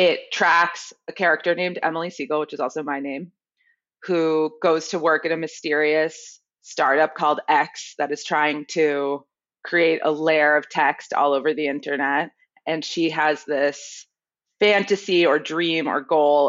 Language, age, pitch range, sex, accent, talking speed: English, 20-39, 145-165 Hz, female, American, 160 wpm